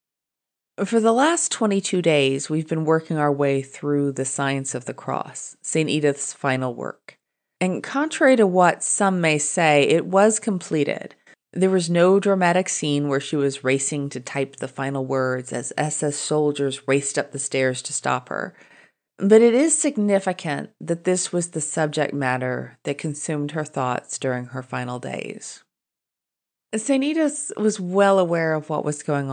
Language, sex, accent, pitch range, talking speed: English, female, American, 140-195 Hz, 165 wpm